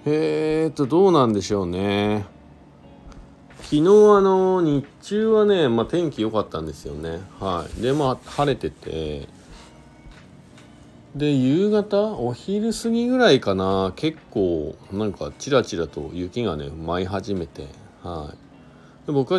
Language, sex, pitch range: Japanese, male, 90-145 Hz